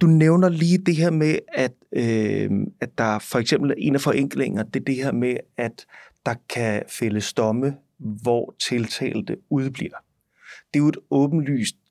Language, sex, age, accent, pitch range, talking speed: Danish, male, 30-49, native, 115-145 Hz, 170 wpm